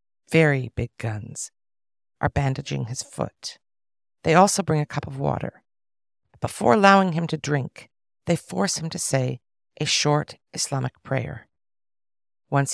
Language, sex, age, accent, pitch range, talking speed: English, female, 50-69, American, 100-155 Hz, 135 wpm